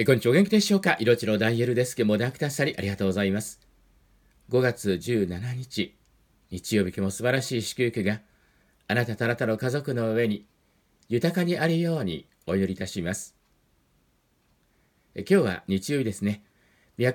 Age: 50-69